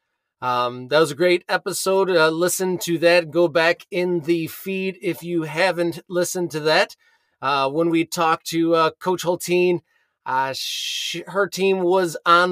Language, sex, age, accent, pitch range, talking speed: English, male, 30-49, American, 165-190 Hz, 160 wpm